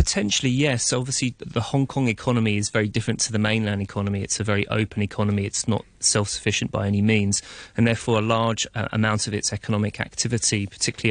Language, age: English, 30-49